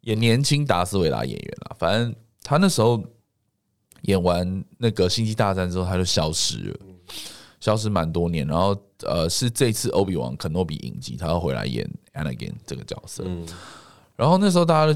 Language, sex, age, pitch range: Chinese, male, 20-39, 90-125 Hz